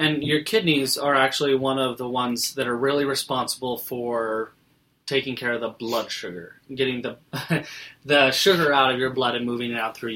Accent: American